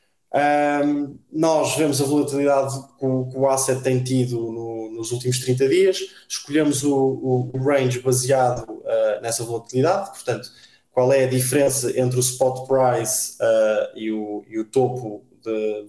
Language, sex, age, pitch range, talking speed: Portuguese, male, 20-39, 115-140 Hz, 155 wpm